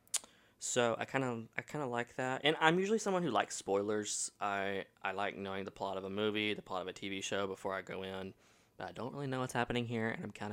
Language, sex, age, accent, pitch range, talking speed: English, male, 20-39, American, 100-125 Hz, 260 wpm